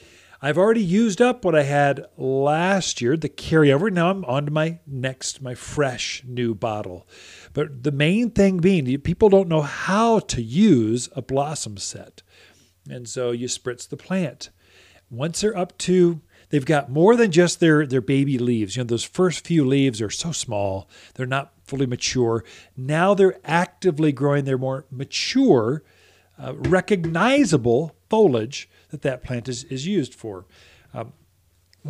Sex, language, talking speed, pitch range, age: male, English, 160 wpm, 120-170 Hz, 40-59